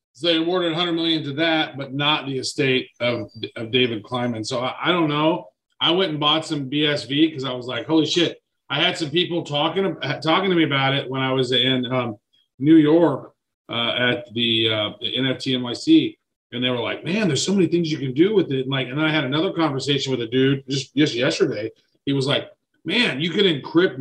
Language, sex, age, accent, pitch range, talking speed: English, male, 40-59, American, 130-170 Hz, 220 wpm